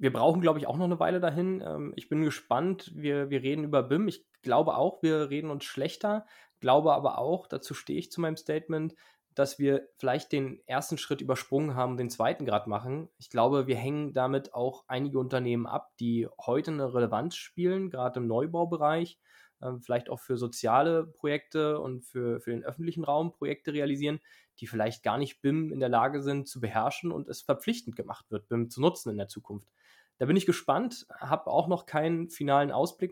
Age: 20-39